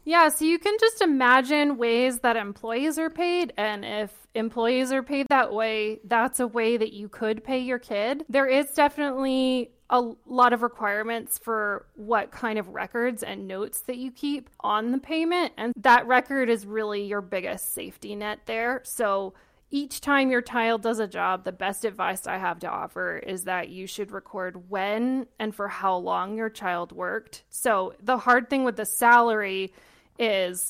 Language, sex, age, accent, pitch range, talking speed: English, female, 20-39, American, 210-255 Hz, 180 wpm